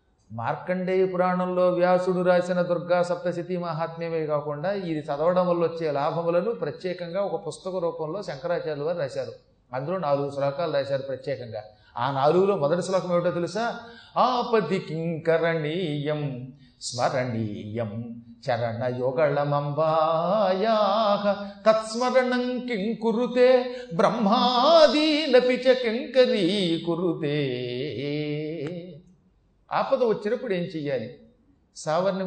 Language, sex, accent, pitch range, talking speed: Telugu, male, native, 150-220 Hz, 65 wpm